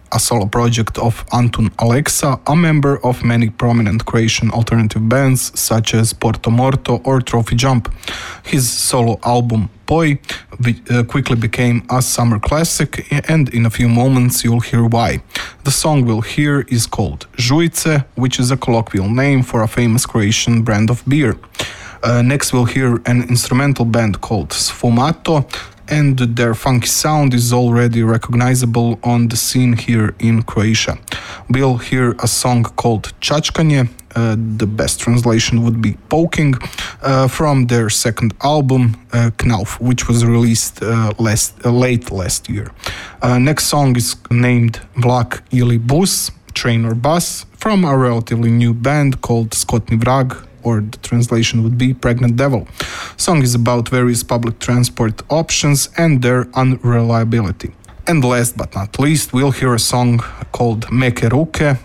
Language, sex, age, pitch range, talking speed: Hungarian, male, 20-39, 115-130 Hz, 150 wpm